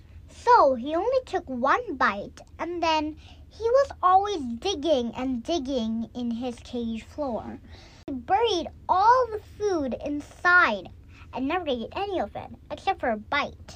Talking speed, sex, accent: 150 wpm, male, American